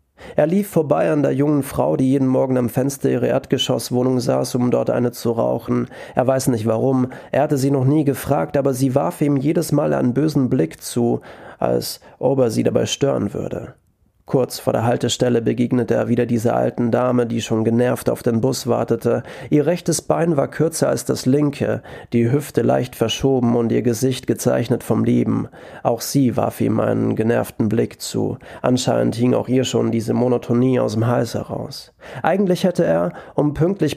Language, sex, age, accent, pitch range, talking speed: German, male, 30-49, German, 115-140 Hz, 185 wpm